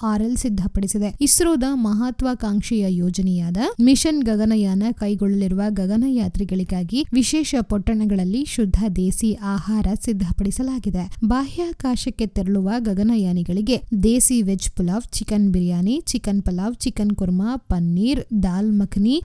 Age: 20-39